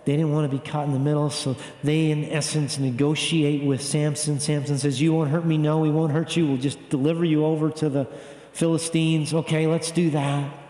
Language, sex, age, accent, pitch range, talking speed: English, male, 40-59, American, 140-160 Hz, 220 wpm